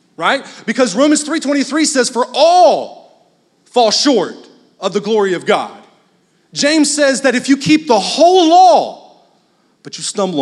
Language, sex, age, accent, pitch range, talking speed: English, male, 30-49, American, 165-250 Hz, 150 wpm